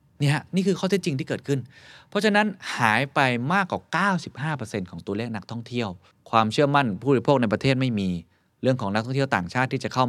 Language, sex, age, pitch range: Thai, male, 20-39, 105-135 Hz